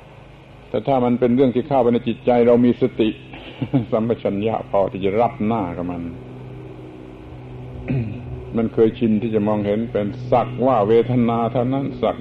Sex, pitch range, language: male, 105-125 Hz, Thai